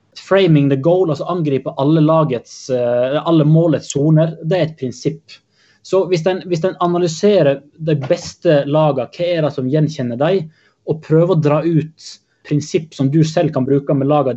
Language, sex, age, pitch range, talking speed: Swedish, male, 20-39, 135-165 Hz, 165 wpm